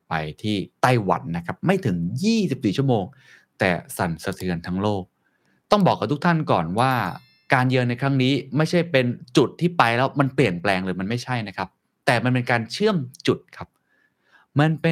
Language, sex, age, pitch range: Thai, male, 20-39, 95-145 Hz